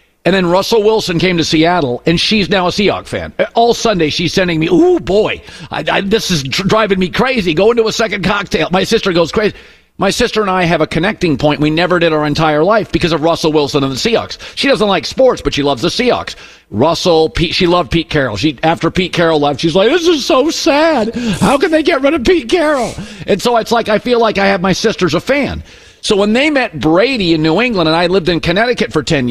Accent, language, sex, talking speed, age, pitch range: American, English, male, 245 wpm, 50-69, 160-220 Hz